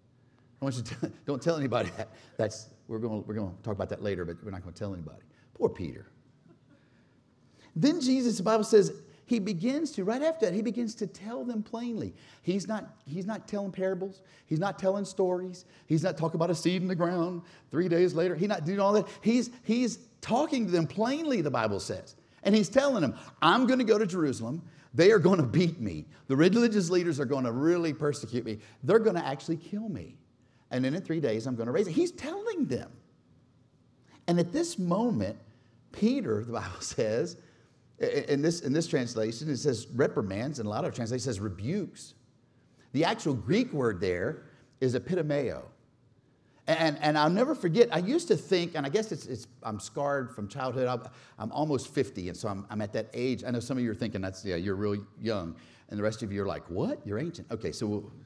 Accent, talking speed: American, 215 wpm